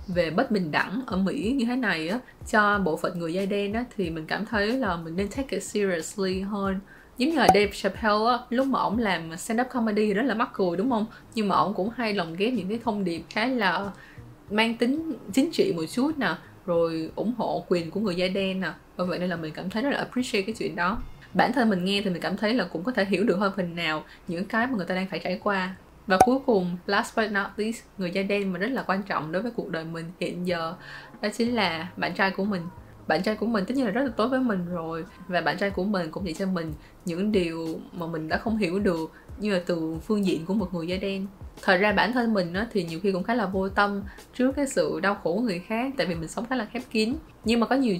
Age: 20-39